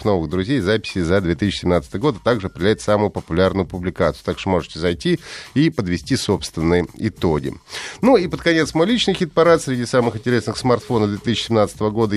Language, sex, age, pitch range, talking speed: Russian, male, 30-49, 95-140 Hz, 165 wpm